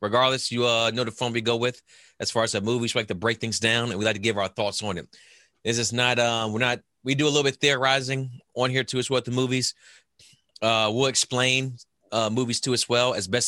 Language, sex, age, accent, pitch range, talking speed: English, male, 30-49, American, 95-120 Hz, 265 wpm